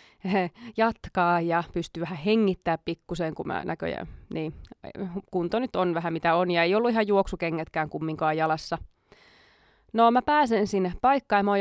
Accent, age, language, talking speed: native, 20-39, Finnish, 160 wpm